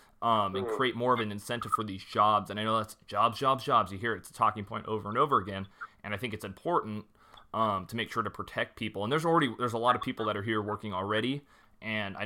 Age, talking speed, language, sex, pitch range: 30-49, 270 wpm, English, male, 105-115 Hz